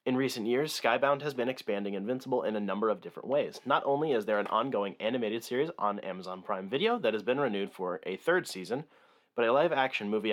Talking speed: 220 wpm